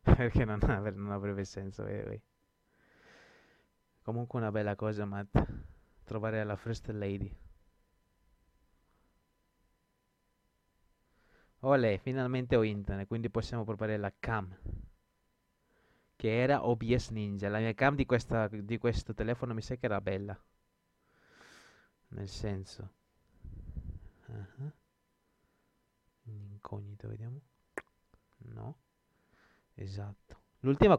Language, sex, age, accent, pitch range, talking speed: Italian, male, 20-39, native, 100-120 Hz, 95 wpm